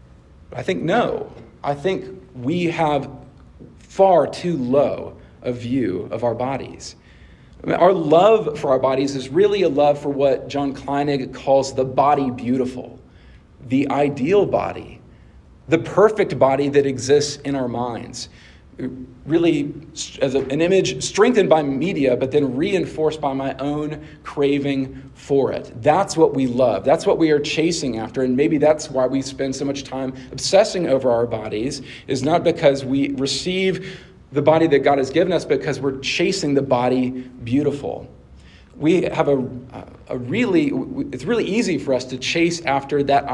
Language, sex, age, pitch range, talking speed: English, male, 40-59, 120-150 Hz, 160 wpm